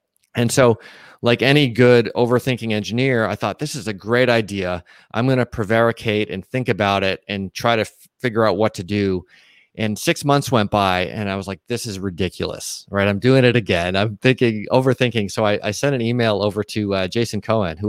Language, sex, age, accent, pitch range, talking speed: English, male, 30-49, American, 100-125 Hz, 210 wpm